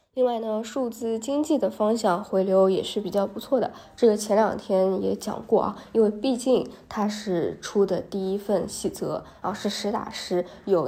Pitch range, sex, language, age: 195-220 Hz, female, Chinese, 20-39